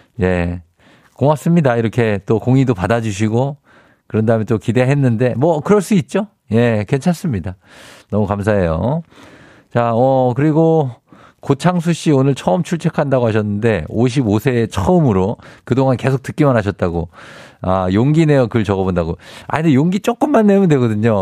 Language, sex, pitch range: Korean, male, 105-150 Hz